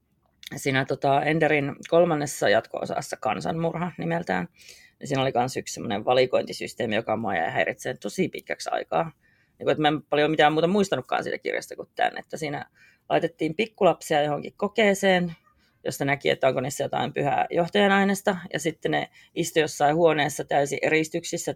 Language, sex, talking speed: Finnish, female, 155 wpm